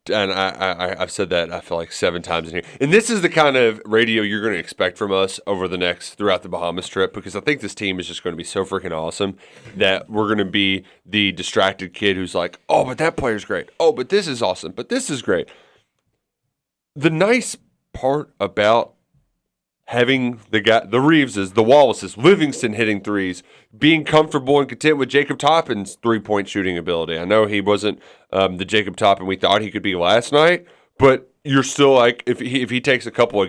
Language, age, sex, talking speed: English, 30-49, male, 220 wpm